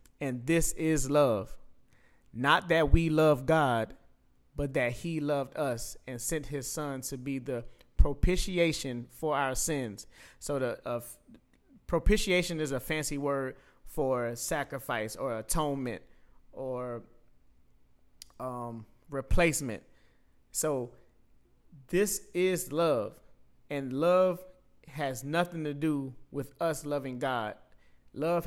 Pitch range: 120-155 Hz